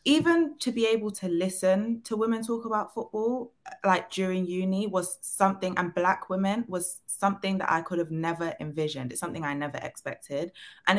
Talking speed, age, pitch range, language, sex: 180 wpm, 20-39, 155-205 Hz, English, female